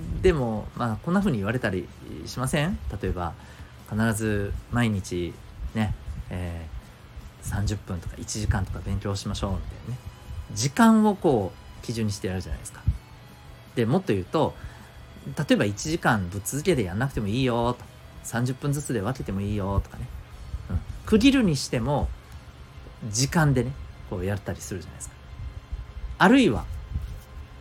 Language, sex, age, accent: Japanese, male, 40-59, native